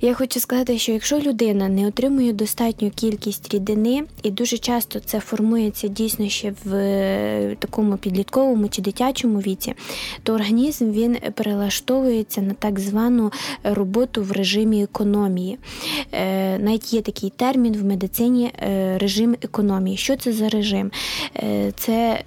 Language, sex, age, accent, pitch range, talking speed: Ukrainian, female, 20-39, native, 200-235 Hz, 130 wpm